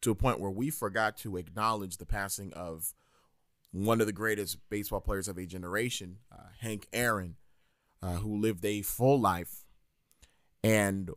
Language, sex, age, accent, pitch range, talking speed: English, male, 30-49, American, 105-140 Hz, 160 wpm